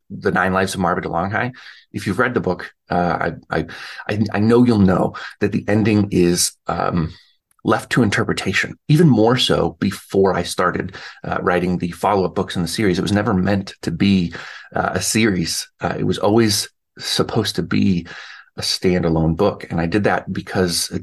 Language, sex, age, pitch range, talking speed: English, male, 30-49, 90-105 Hz, 185 wpm